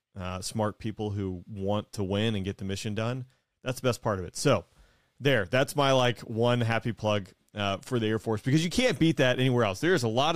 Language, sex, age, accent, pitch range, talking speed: English, male, 30-49, American, 100-125 Hz, 240 wpm